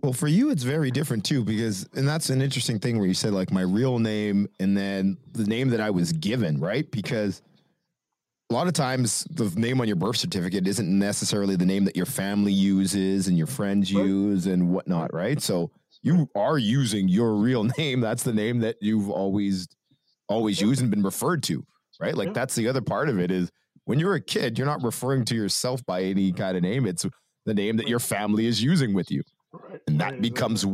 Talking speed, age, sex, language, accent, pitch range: 215 wpm, 30-49, male, English, American, 95-120 Hz